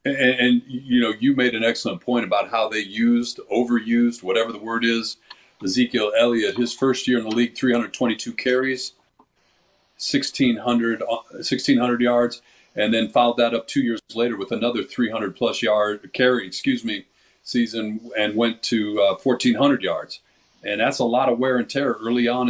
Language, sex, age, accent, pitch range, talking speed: English, male, 40-59, American, 110-125 Hz, 165 wpm